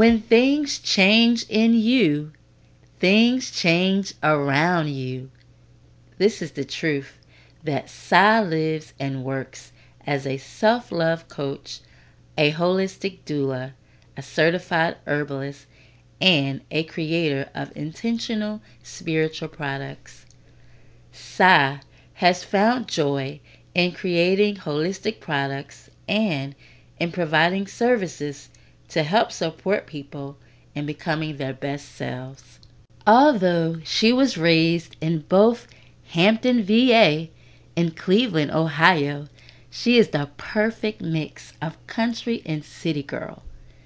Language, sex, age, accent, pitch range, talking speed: English, female, 40-59, American, 135-190 Hz, 105 wpm